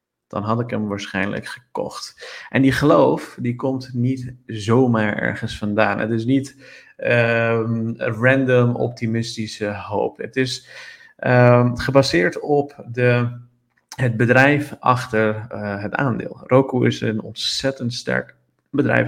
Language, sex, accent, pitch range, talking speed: Dutch, male, Dutch, 105-125 Hz, 130 wpm